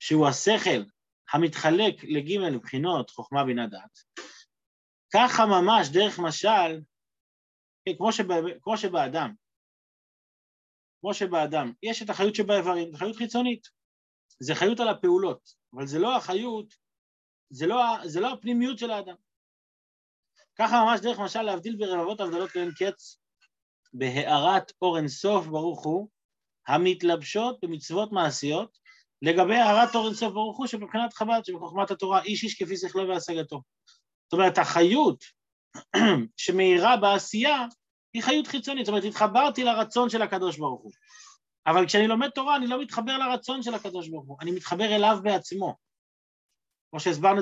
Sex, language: male, Hebrew